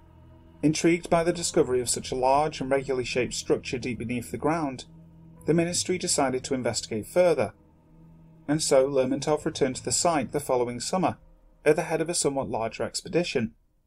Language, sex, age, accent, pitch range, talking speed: English, male, 30-49, British, 120-150 Hz, 175 wpm